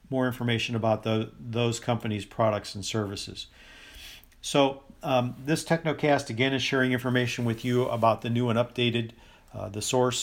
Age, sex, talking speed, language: 50-69, male, 160 wpm, English